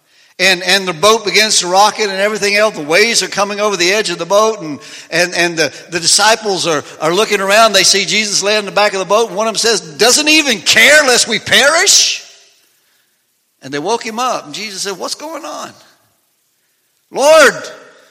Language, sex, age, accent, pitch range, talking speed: English, male, 60-79, American, 155-215 Hz, 210 wpm